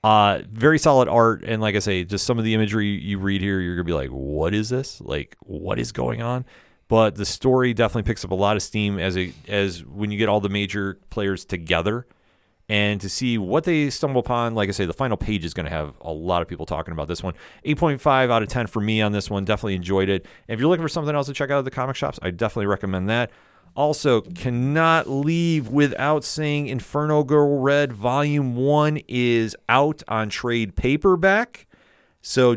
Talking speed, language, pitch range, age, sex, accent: 225 wpm, English, 100-135 Hz, 30-49, male, American